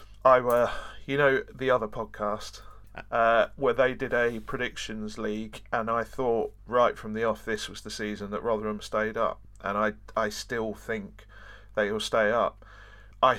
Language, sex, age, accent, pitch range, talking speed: English, male, 40-59, British, 105-125 Hz, 175 wpm